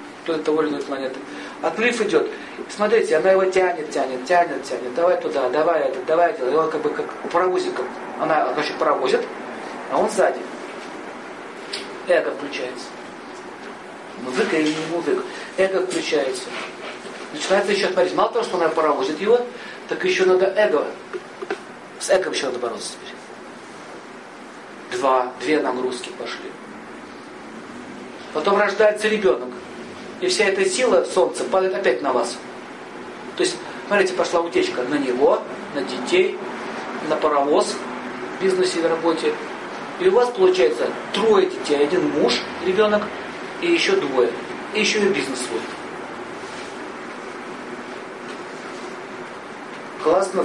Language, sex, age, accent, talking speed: Russian, male, 50-69, native, 125 wpm